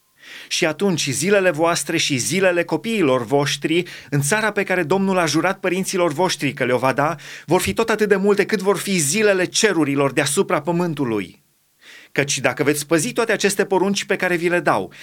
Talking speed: 185 wpm